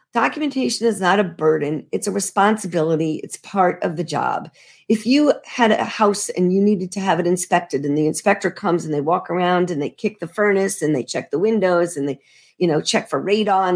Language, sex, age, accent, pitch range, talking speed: English, female, 50-69, American, 170-210 Hz, 220 wpm